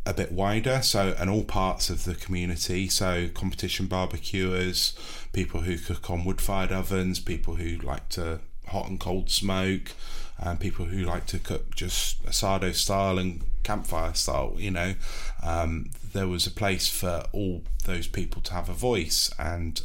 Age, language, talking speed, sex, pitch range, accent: 20-39, English, 165 wpm, male, 85-95 Hz, British